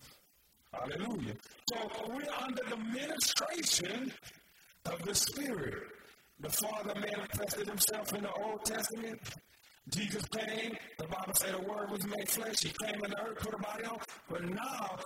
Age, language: 50-69, English